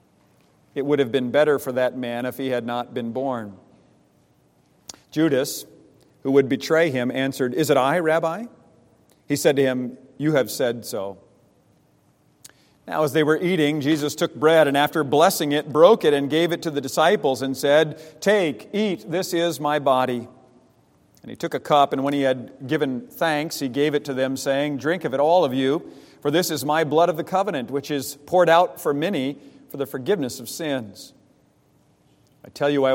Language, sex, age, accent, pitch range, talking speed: English, male, 50-69, American, 125-150 Hz, 195 wpm